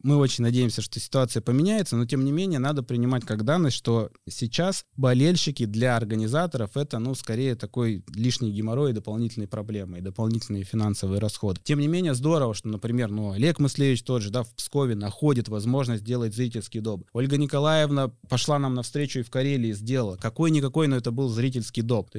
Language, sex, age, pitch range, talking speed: Russian, male, 20-39, 115-145 Hz, 185 wpm